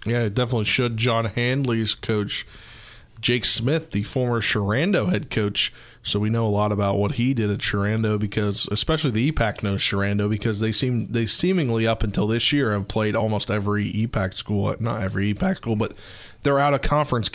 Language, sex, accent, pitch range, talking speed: English, male, American, 105-125 Hz, 190 wpm